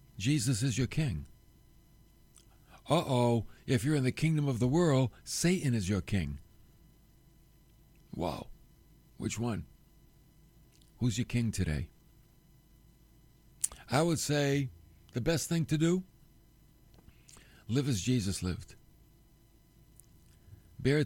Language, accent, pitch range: English, American, 120-160 Hz